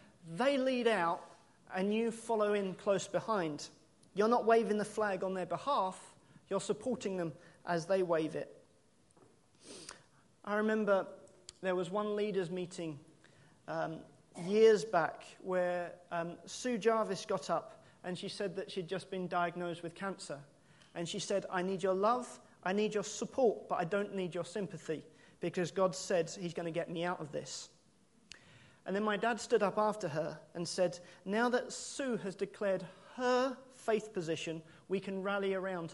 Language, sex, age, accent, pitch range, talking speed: English, male, 30-49, British, 175-210 Hz, 165 wpm